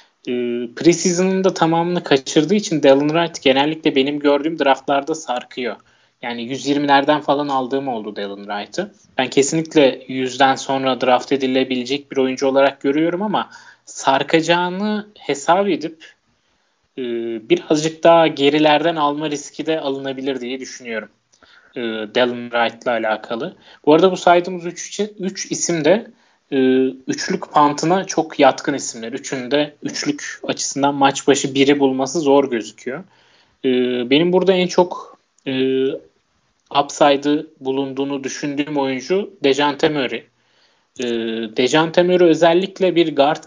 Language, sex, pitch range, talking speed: Turkish, male, 130-165 Hz, 110 wpm